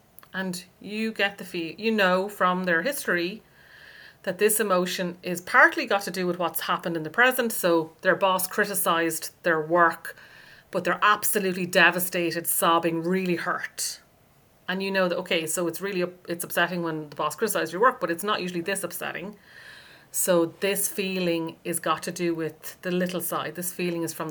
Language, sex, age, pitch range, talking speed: English, female, 30-49, 165-185 Hz, 185 wpm